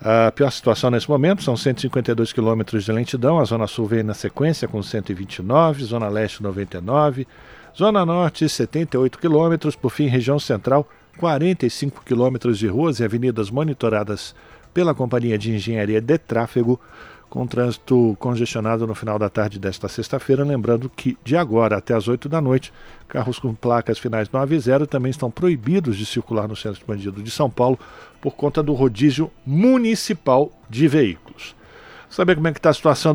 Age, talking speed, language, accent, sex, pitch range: 50-69, 170 wpm, Portuguese, Brazilian, male, 120-165 Hz